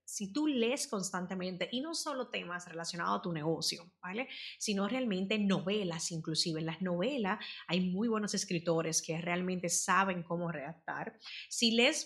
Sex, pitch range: female, 175-215 Hz